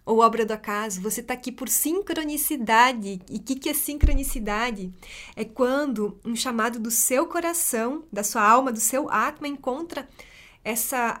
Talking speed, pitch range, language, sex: 155 wpm, 220-270 Hz, Portuguese, female